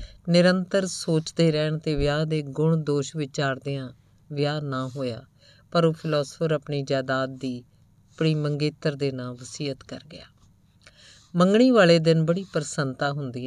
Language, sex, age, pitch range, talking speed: Punjabi, female, 50-69, 130-155 Hz, 145 wpm